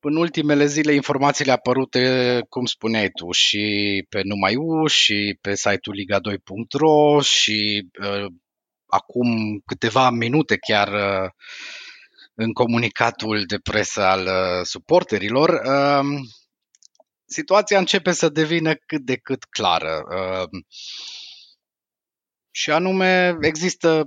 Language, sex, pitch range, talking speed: Romanian, male, 115-165 Hz, 105 wpm